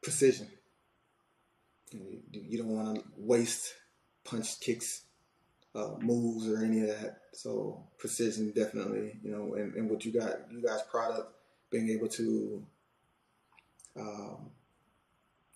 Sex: male